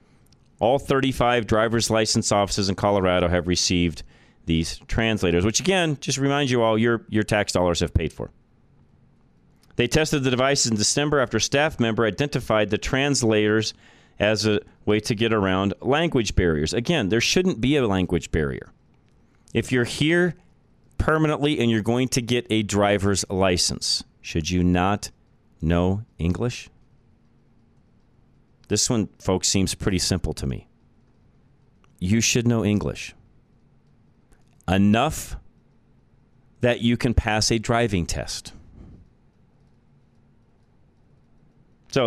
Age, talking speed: 40-59, 130 wpm